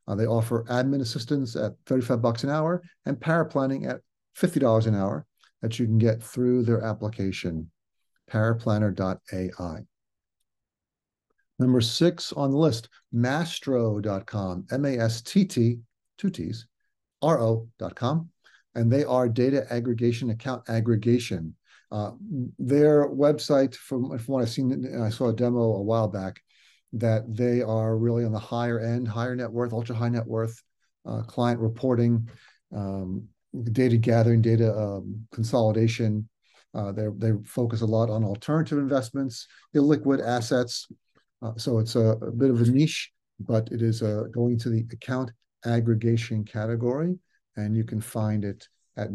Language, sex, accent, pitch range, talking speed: English, male, American, 110-130 Hz, 140 wpm